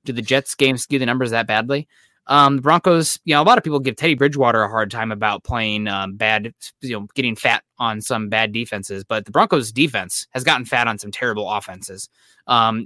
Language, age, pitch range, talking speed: English, 20-39, 110-135 Hz, 225 wpm